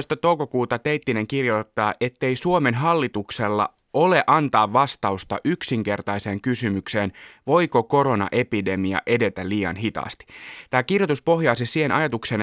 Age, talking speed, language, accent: 30-49, 100 wpm, Finnish, native